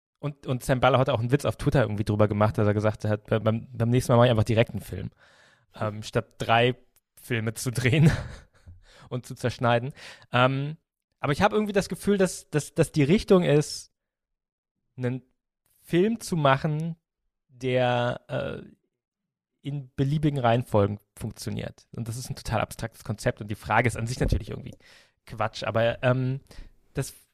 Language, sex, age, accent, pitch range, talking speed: German, male, 20-39, German, 115-140 Hz, 170 wpm